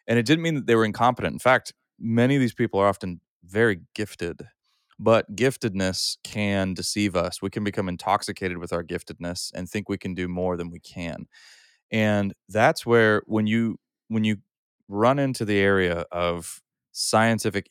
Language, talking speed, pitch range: English, 175 wpm, 90-110 Hz